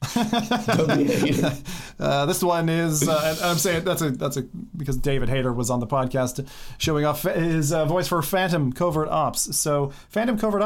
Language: English